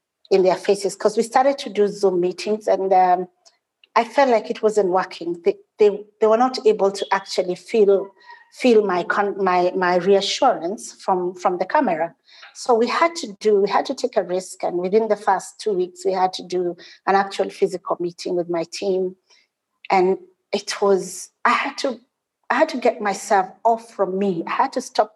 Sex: female